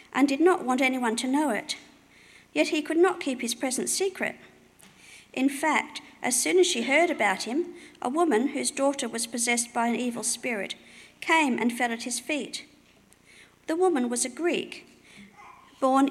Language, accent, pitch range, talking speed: English, Australian, 240-285 Hz, 175 wpm